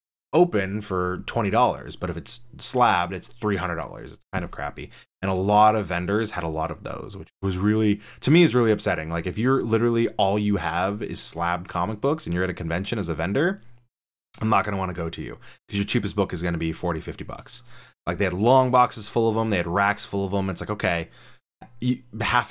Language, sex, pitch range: English, male, 90-130 Hz